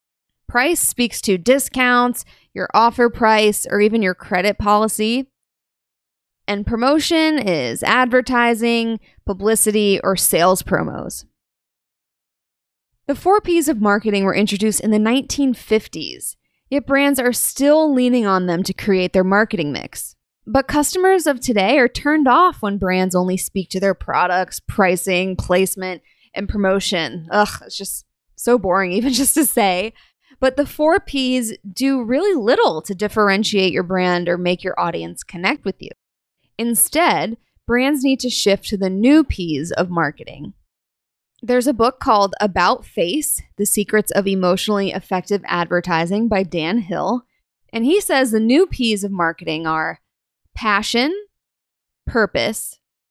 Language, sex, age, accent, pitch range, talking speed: English, female, 20-39, American, 185-255 Hz, 140 wpm